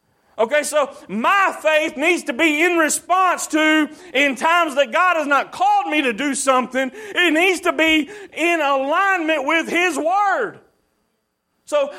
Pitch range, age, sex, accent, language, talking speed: 265-340 Hz, 40-59, male, American, English, 155 wpm